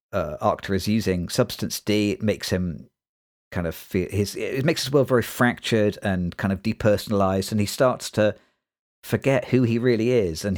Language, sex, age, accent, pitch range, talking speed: English, male, 50-69, British, 90-110 Hz, 180 wpm